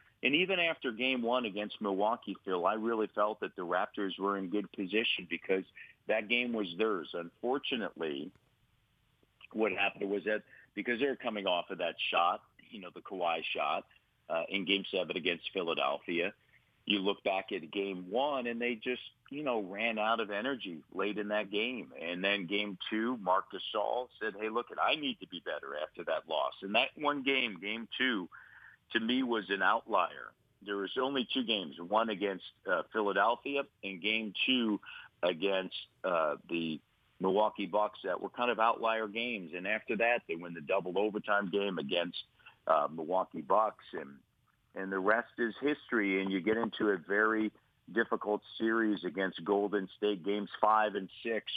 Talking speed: 175 wpm